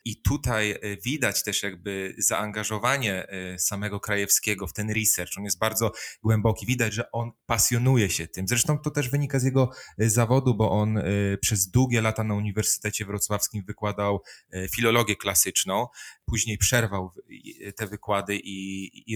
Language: Polish